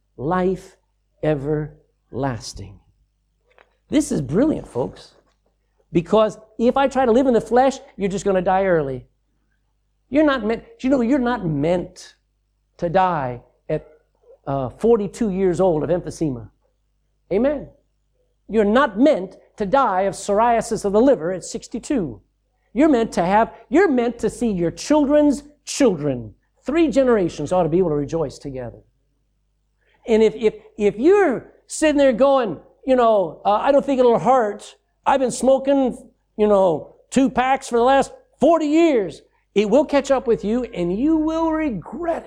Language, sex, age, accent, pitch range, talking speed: English, male, 50-69, American, 175-270 Hz, 155 wpm